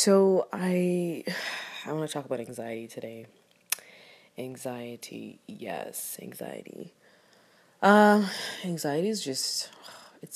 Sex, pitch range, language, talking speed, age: female, 130-185 Hz, English, 100 wpm, 20-39